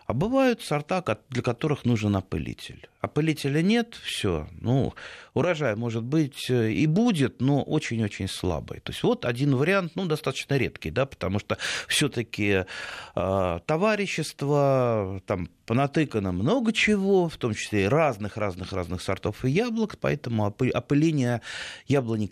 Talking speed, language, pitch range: 130 wpm, Russian, 95-135 Hz